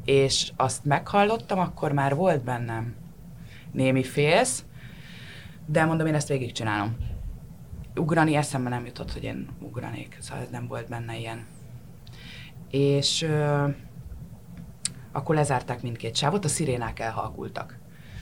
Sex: female